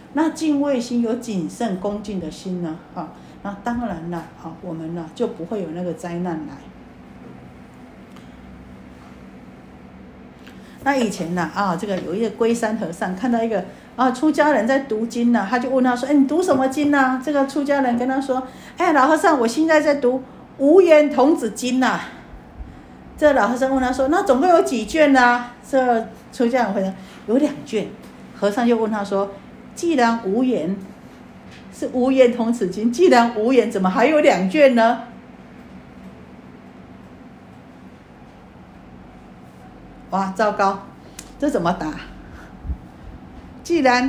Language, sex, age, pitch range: Chinese, female, 50-69, 165-255 Hz